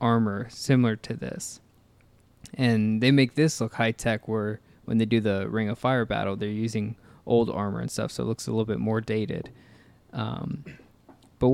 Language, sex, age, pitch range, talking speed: English, male, 20-39, 110-125 Hz, 180 wpm